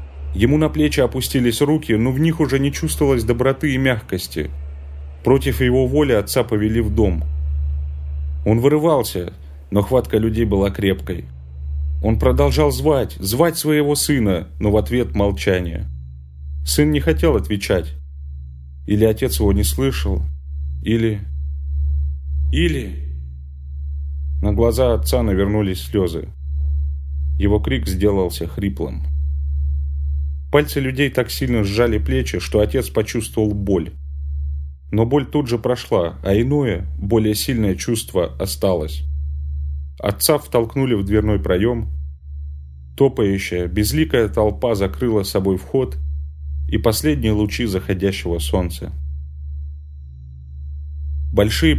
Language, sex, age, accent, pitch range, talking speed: Russian, male, 30-49, native, 70-110 Hz, 110 wpm